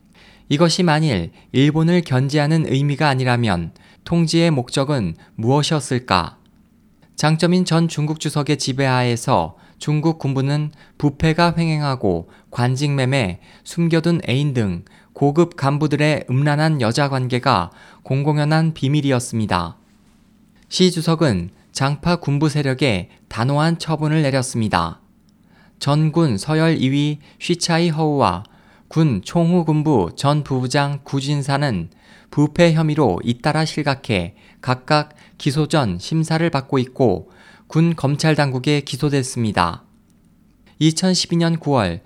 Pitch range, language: 130-160 Hz, Korean